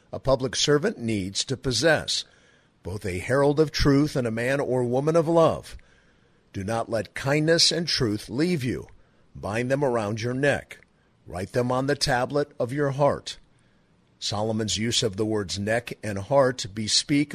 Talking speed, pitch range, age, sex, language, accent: 165 wpm, 110-145 Hz, 50-69, male, English, American